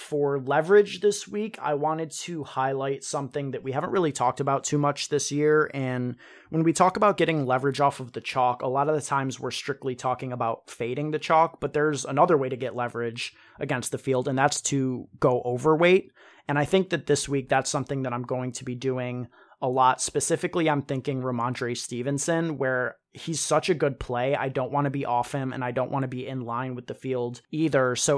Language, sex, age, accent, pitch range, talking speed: English, male, 30-49, American, 125-145 Hz, 220 wpm